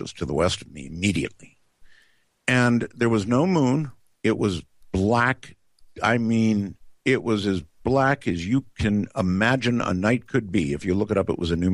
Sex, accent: male, American